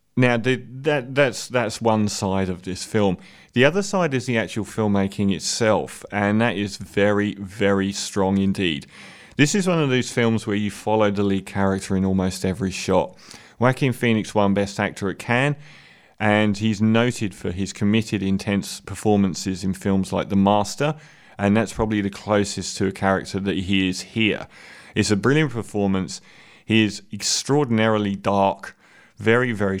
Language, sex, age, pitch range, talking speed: English, male, 30-49, 100-120 Hz, 165 wpm